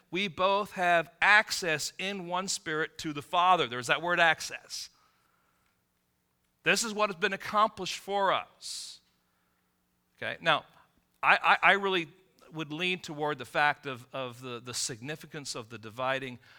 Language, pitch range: English, 110-155 Hz